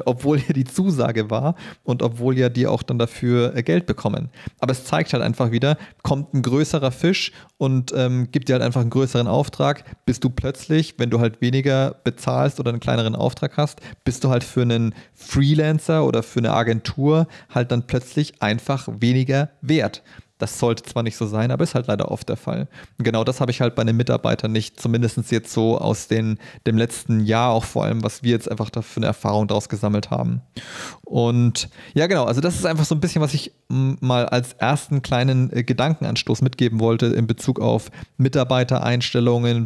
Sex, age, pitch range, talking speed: male, 30-49, 115-140 Hz, 195 wpm